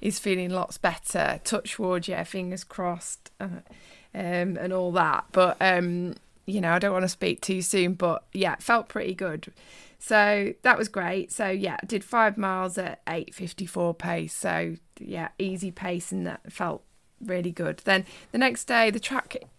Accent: British